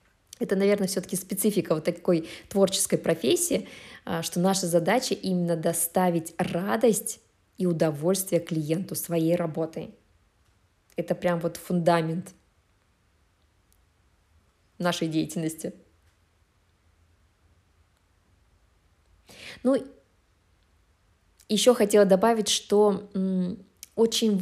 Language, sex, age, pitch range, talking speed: Russian, female, 20-39, 160-200 Hz, 75 wpm